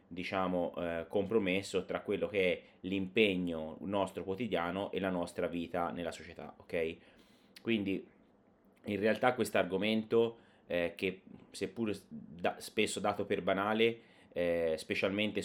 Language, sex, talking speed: Italian, male, 125 wpm